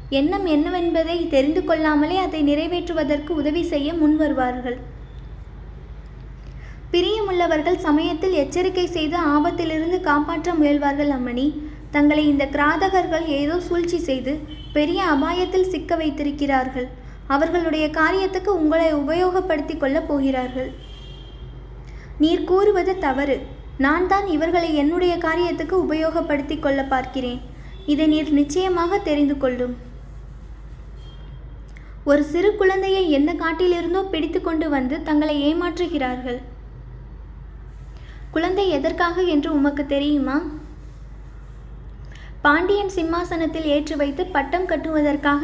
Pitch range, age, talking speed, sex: 285-345 Hz, 20-39, 90 wpm, female